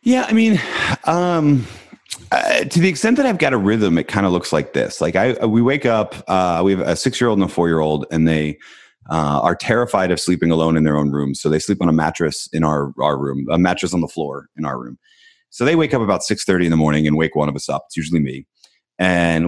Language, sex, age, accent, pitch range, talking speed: English, male, 30-49, American, 80-100 Hz, 270 wpm